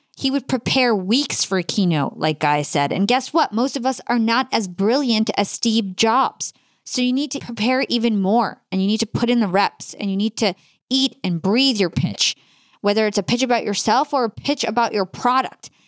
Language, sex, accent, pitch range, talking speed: English, female, American, 190-245 Hz, 225 wpm